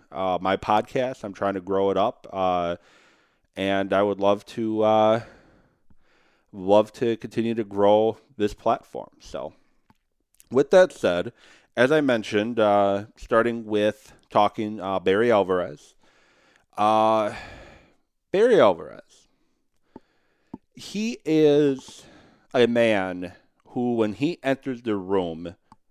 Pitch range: 100-130 Hz